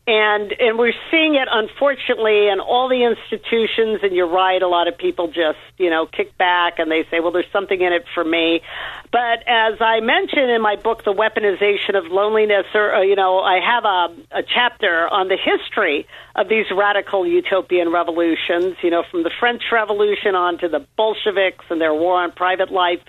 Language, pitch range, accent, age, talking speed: English, 180-235 Hz, American, 50-69, 195 wpm